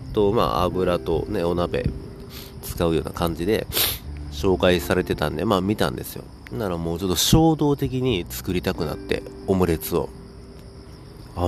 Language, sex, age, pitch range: Japanese, male, 40-59, 80-100 Hz